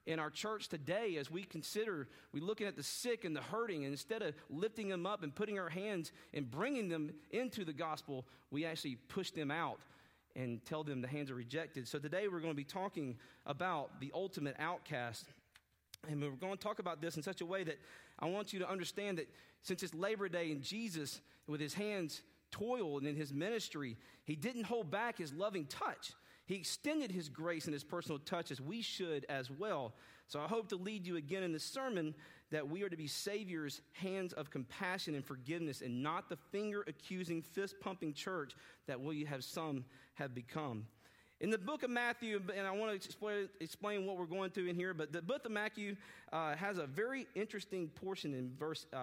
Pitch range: 150-205 Hz